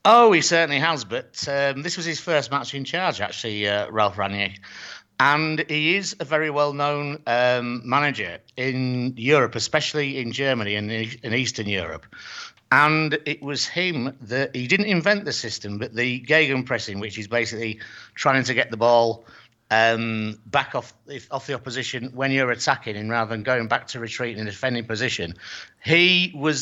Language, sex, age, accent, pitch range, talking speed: English, male, 50-69, British, 115-150 Hz, 180 wpm